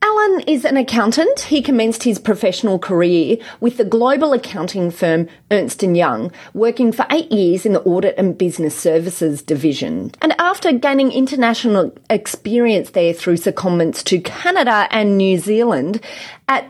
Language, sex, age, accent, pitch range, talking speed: English, female, 30-49, Australian, 185-250 Hz, 145 wpm